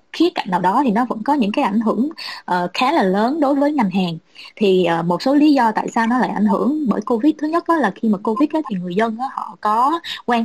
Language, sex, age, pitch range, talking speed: Vietnamese, female, 20-39, 195-270 Hz, 280 wpm